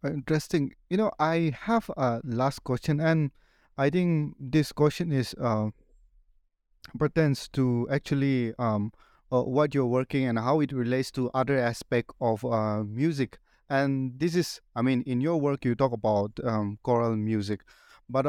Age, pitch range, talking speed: 30-49, 115-145 Hz, 160 wpm